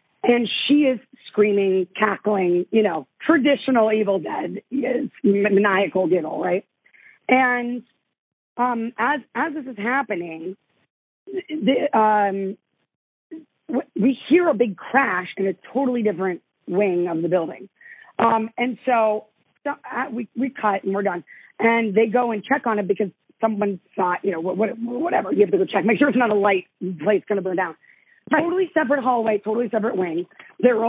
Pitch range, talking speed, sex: 200-255 Hz, 160 wpm, female